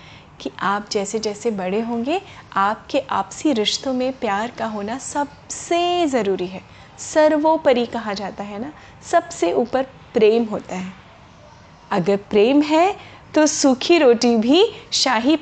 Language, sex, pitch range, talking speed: Hindi, female, 210-295 Hz, 130 wpm